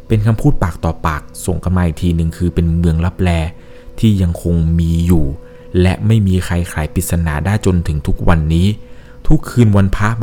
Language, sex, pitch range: Thai, male, 80-100 Hz